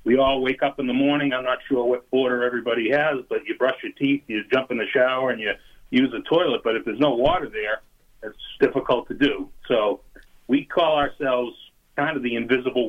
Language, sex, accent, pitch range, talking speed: English, male, American, 115-145 Hz, 220 wpm